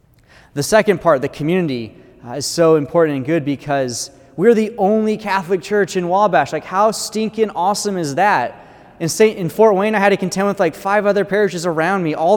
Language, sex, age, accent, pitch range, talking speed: English, male, 30-49, American, 150-200 Hz, 205 wpm